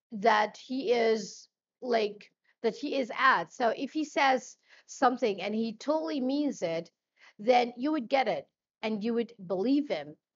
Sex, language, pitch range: female, English, 205-255 Hz